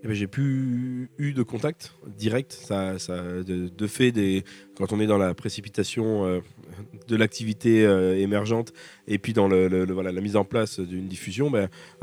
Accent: French